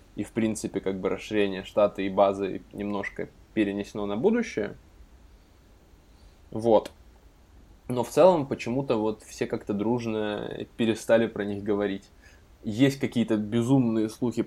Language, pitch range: Russian, 100-110 Hz